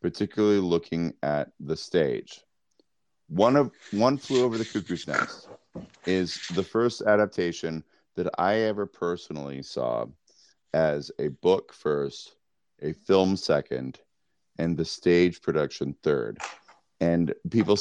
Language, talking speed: English, 120 wpm